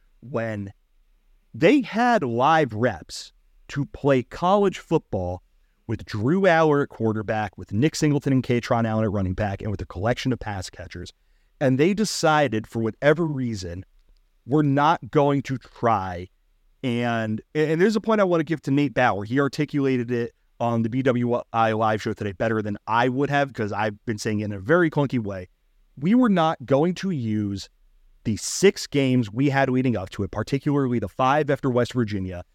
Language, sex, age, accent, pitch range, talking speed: English, male, 30-49, American, 110-145 Hz, 180 wpm